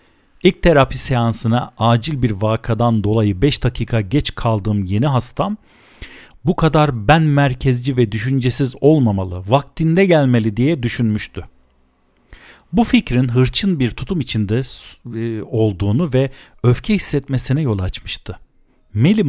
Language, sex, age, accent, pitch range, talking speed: Turkish, male, 50-69, native, 110-145 Hz, 115 wpm